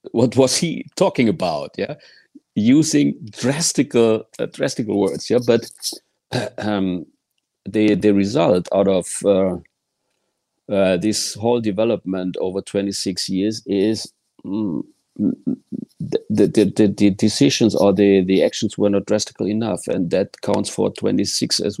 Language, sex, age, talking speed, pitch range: English, male, 50-69, 135 wpm, 105-125 Hz